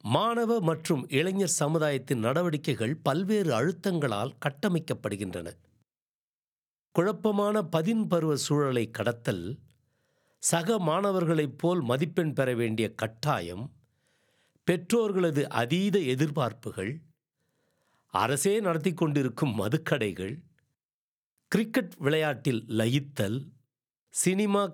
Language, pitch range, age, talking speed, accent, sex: Tamil, 120-170 Hz, 60-79, 75 wpm, native, male